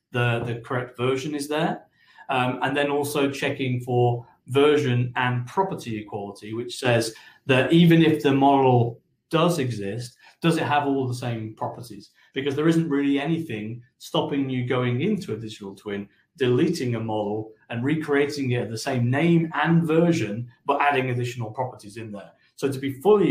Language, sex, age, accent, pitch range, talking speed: English, male, 40-59, British, 115-145 Hz, 165 wpm